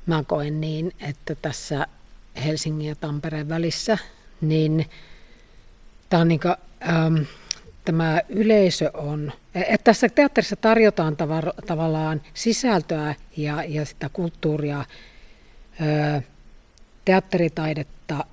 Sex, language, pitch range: female, Finnish, 155-190 Hz